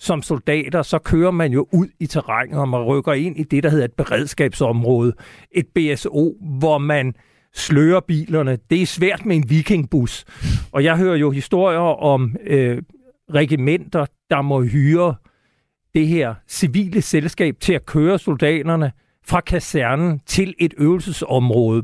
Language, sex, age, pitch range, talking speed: Danish, male, 60-79, 135-165 Hz, 150 wpm